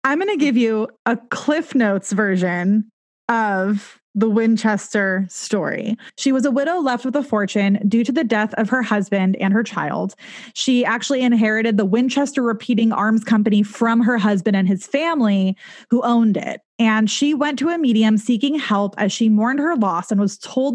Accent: American